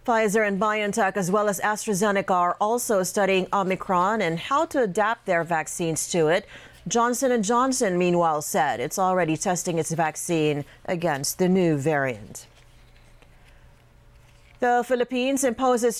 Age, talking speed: 40-59, 130 wpm